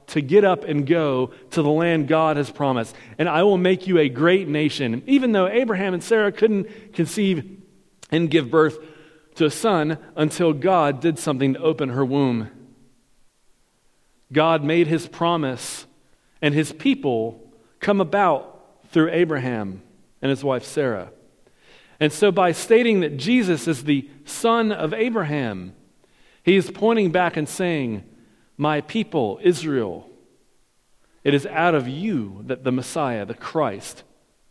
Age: 40-59